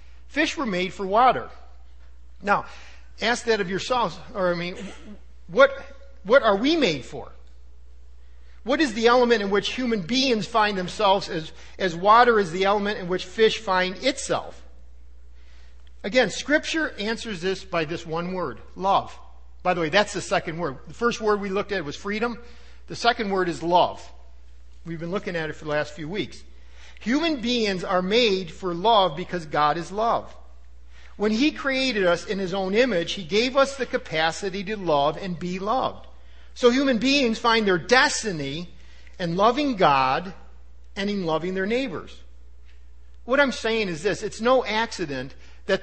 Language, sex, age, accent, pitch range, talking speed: English, male, 50-69, American, 150-230 Hz, 170 wpm